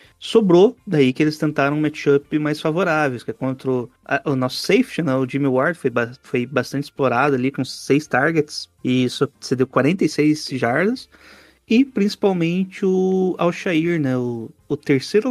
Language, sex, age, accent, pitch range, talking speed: Portuguese, male, 30-49, Brazilian, 130-160 Hz, 170 wpm